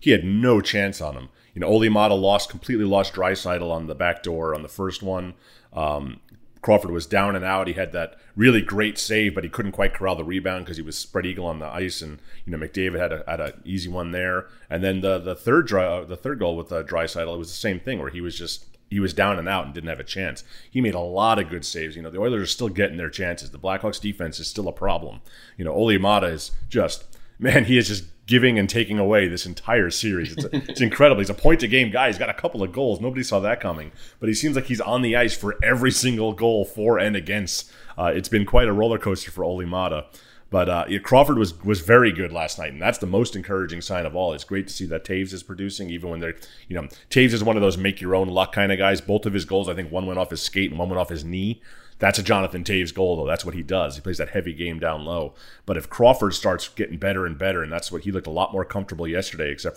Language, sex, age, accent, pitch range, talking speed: English, male, 30-49, American, 85-105 Hz, 270 wpm